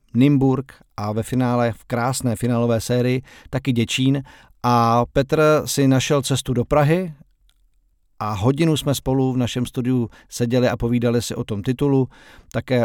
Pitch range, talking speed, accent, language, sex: 115-135 Hz, 150 wpm, native, Czech, male